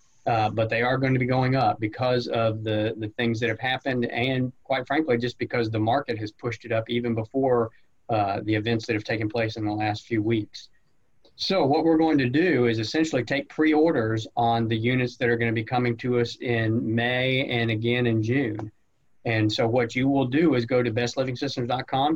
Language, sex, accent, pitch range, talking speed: English, male, American, 115-140 Hz, 215 wpm